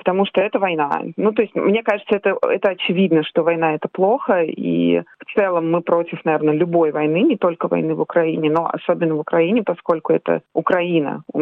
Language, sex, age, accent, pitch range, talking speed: Russian, female, 30-49, native, 160-190 Hz, 195 wpm